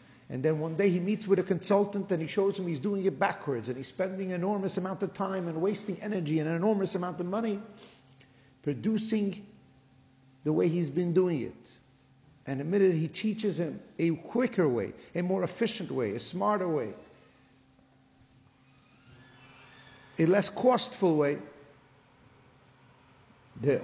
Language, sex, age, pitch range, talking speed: English, male, 50-69, 155-215 Hz, 155 wpm